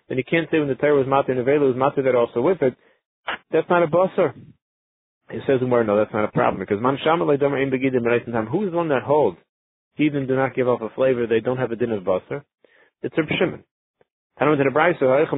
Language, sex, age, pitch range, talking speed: English, male, 30-49, 120-155 Hz, 225 wpm